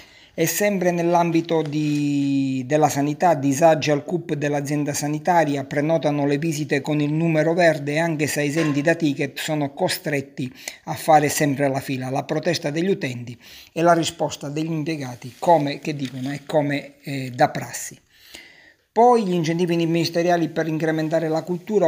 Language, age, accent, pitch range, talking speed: Italian, 50-69, native, 145-165 Hz, 150 wpm